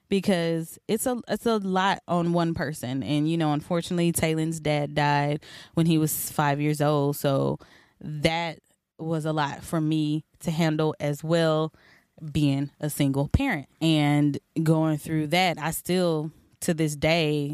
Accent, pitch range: American, 145-165 Hz